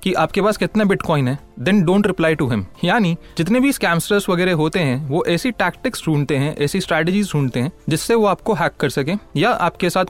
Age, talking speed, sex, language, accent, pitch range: 30-49, 185 wpm, male, Hindi, native, 150-195 Hz